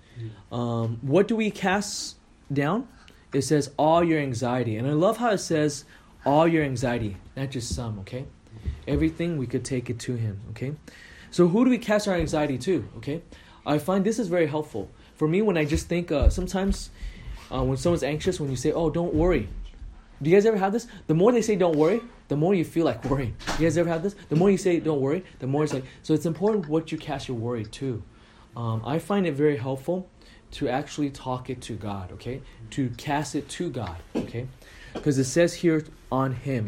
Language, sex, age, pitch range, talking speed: English, male, 20-39, 120-170 Hz, 215 wpm